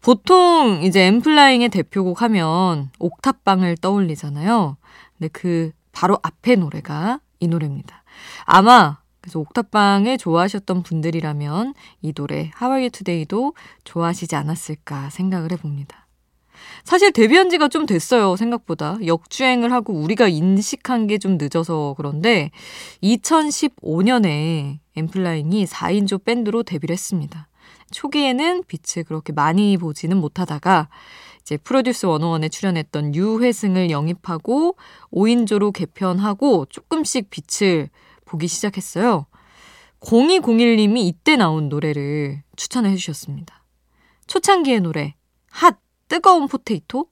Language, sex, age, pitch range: Korean, female, 20-39, 165-240 Hz